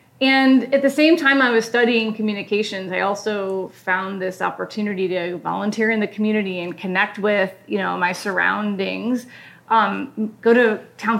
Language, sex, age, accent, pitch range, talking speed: English, female, 30-49, American, 190-230 Hz, 150 wpm